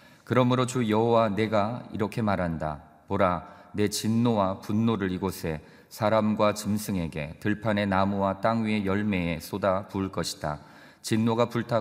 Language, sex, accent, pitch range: Korean, male, native, 85-105 Hz